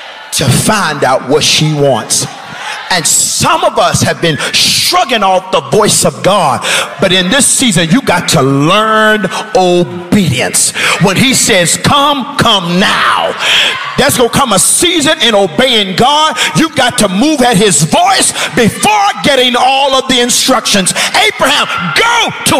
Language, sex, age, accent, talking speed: English, male, 50-69, American, 155 wpm